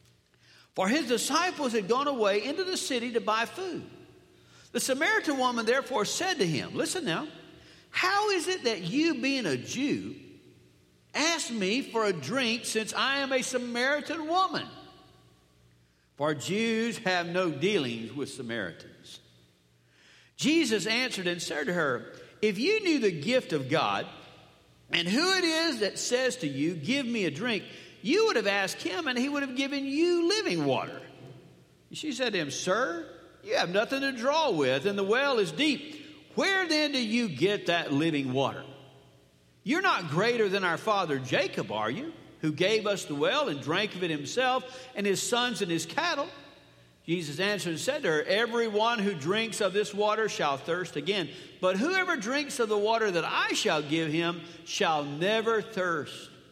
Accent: American